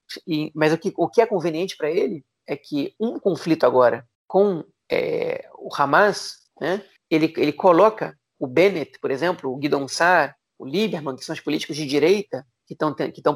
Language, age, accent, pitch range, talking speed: Portuguese, 40-59, Brazilian, 155-195 Hz, 175 wpm